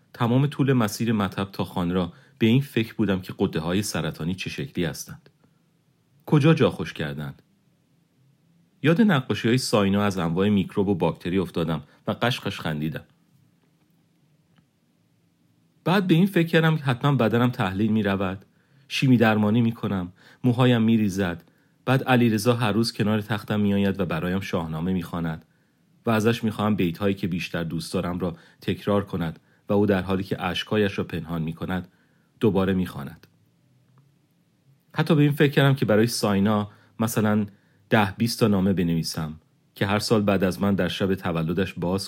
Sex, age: male, 40-59